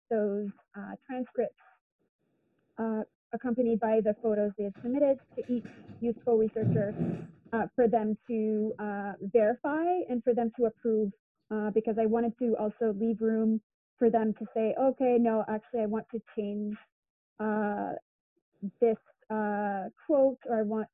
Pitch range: 210-235 Hz